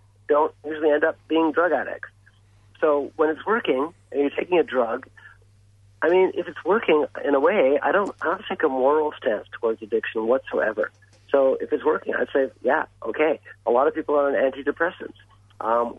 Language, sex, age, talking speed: English, male, 50-69, 190 wpm